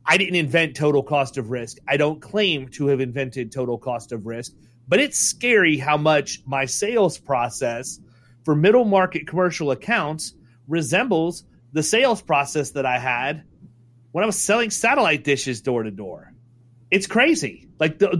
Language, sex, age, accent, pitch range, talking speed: English, male, 30-49, American, 135-175 Hz, 165 wpm